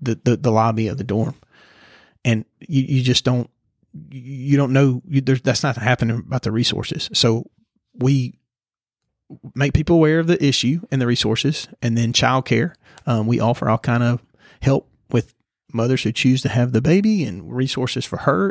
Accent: American